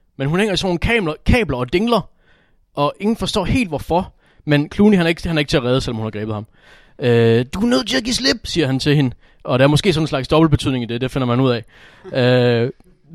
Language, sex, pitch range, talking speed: Danish, male, 120-170 Hz, 265 wpm